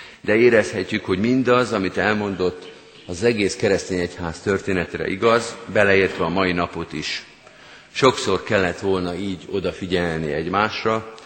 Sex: male